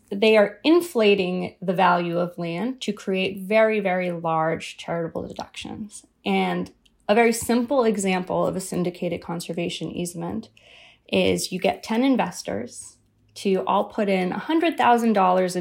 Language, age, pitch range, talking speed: English, 20-39, 190-245 Hz, 130 wpm